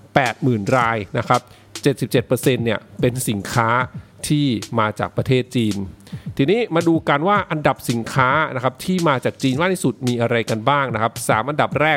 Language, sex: English, male